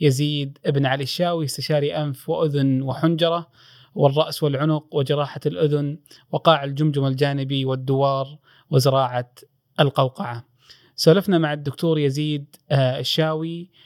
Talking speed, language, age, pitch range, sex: 105 wpm, Arabic, 30-49, 130-155 Hz, male